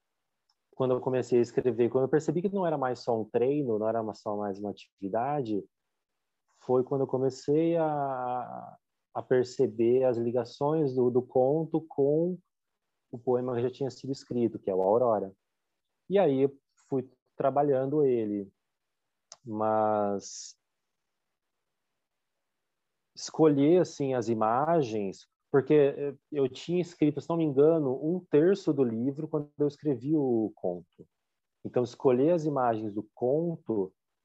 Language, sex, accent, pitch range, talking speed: Portuguese, male, Brazilian, 115-145 Hz, 140 wpm